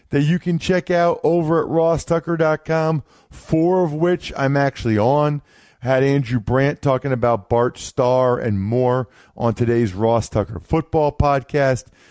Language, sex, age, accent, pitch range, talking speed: English, male, 40-59, American, 110-145 Hz, 145 wpm